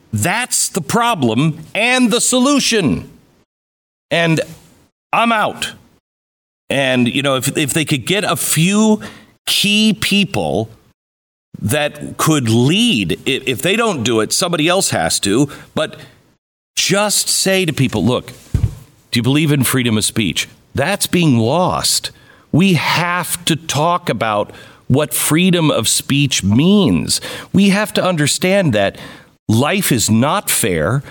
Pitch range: 125-185 Hz